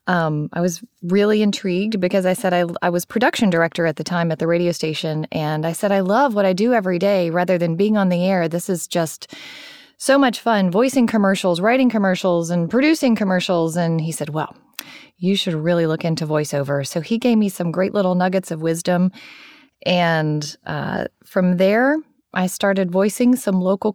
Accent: American